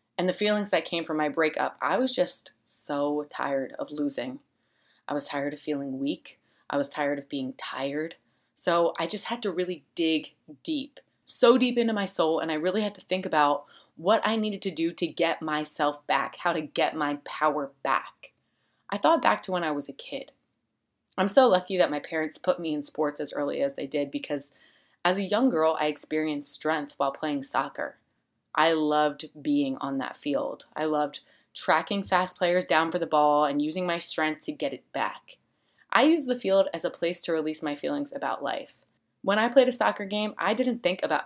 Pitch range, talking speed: 145-190 Hz, 210 wpm